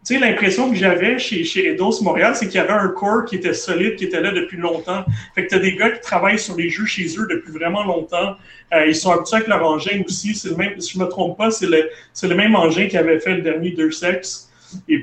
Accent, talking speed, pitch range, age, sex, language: Canadian, 270 wpm, 165-195 Hz, 30-49, male, French